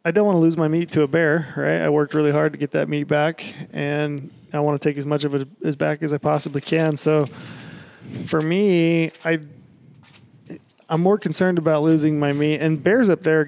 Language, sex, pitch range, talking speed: English, male, 140-160 Hz, 225 wpm